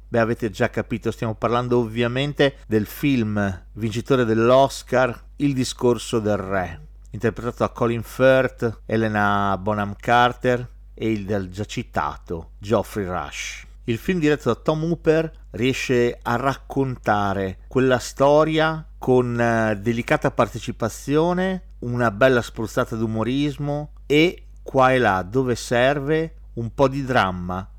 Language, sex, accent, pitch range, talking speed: Italian, male, native, 110-140 Hz, 125 wpm